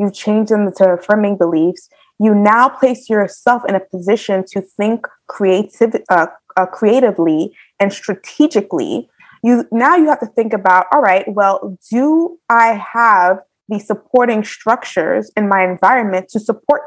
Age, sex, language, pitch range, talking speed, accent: 20-39, female, English, 185-230 Hz, 150 wpm, American